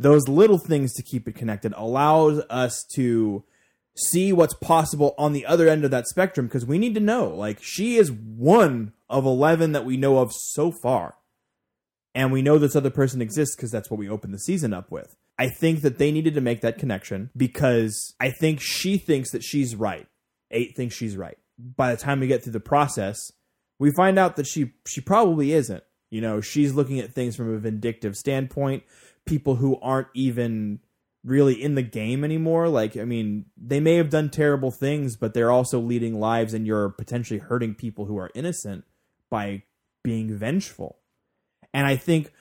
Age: 20-39